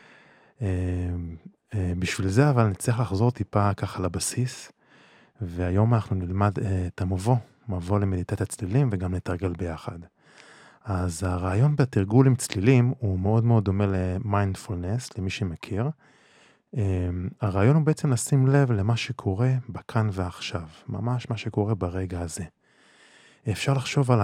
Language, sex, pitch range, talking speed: Hebrew, male, 95-120 Hz, 130 wpm